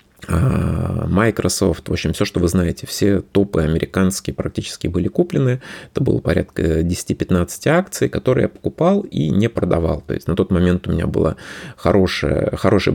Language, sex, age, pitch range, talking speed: Russian, male, 30-49, 85-105 Hz, 160 wpm